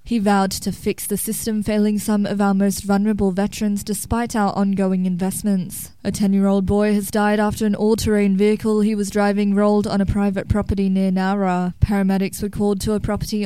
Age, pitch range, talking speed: 20-39, 195-215 Hz, 185 wpm